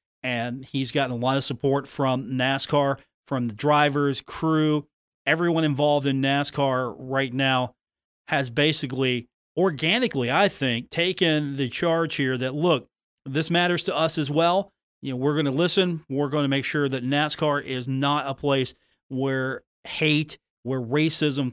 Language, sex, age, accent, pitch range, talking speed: English, male, 40-59, American, 130-150 Hz, 160 wpm